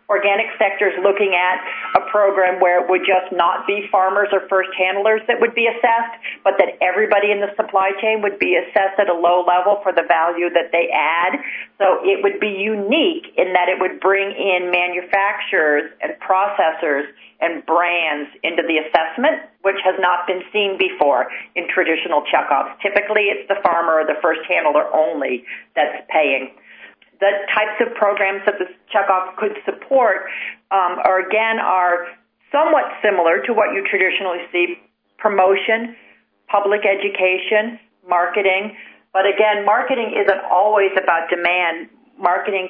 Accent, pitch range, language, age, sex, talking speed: American, 175-210 Hz, English, 50-69, female, 155 wpm